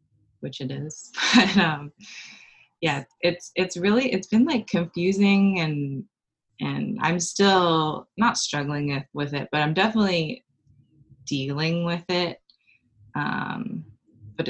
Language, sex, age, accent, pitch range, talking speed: English, female, 20-39, American, 140-165 Hz, 120 wpm